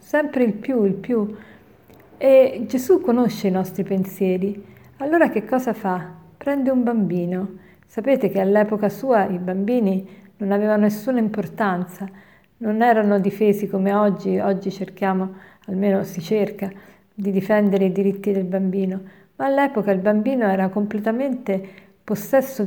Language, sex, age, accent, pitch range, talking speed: Italian, female, 50-69, native, 195-235 Hz, 135 wpm